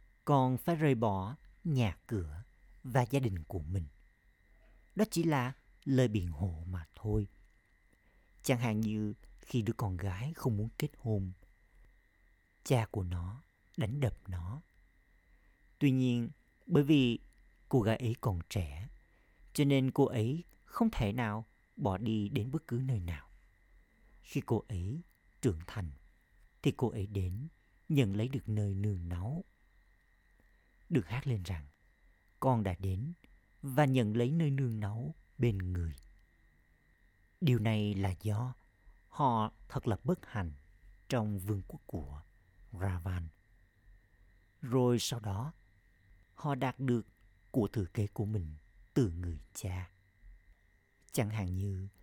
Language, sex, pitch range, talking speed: Vietnamese, male, 95-125 Hz, 140 wpm